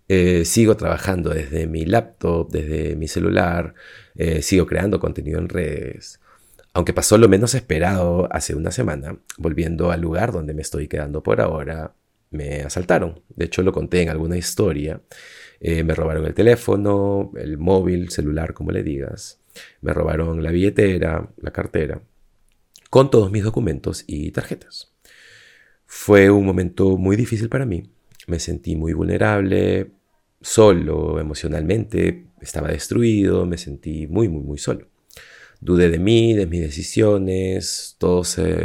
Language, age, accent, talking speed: Spanish, 30-49, Argentinian, 145 wpm